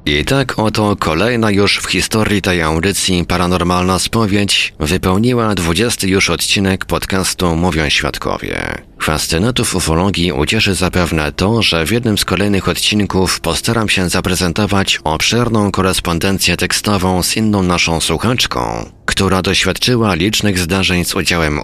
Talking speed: 120 wpm